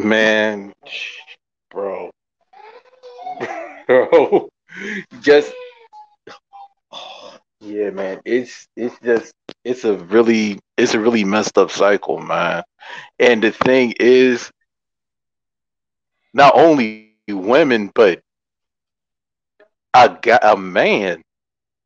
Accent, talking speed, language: American, 85 wpm, English